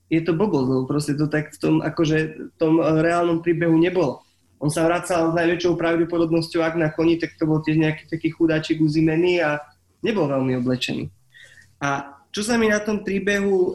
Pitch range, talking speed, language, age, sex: 155-185 Hz, 180 wpm, Slovak, 20-39, male